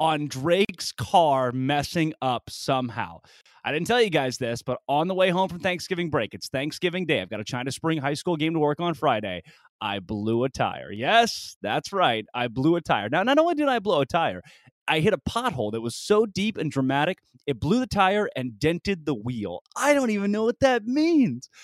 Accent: American